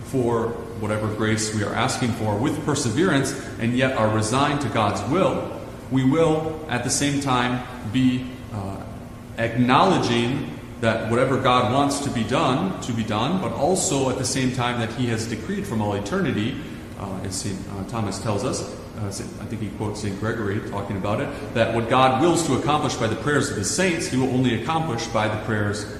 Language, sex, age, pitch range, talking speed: English, male, 30-49, 105-130 Hz, 190 wpm